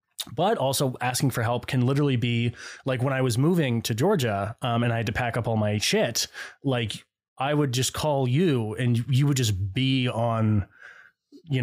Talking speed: 195 wpm